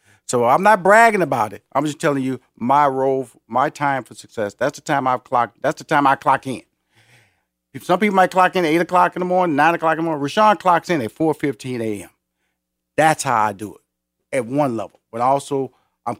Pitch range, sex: 110-170 Hz, male